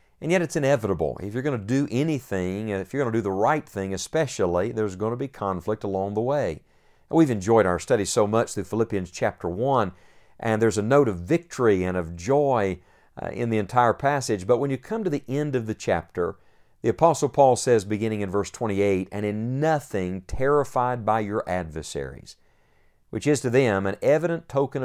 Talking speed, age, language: 205 wpm, 50-69, English